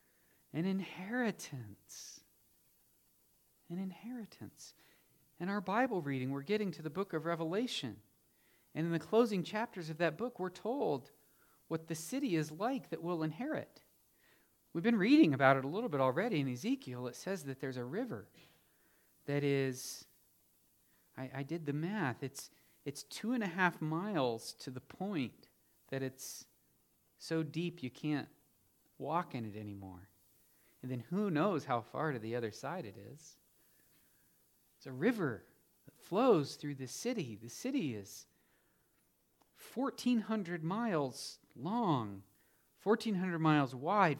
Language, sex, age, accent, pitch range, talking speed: English, male, 40-59, American, 135-195 Hz, 145 wpm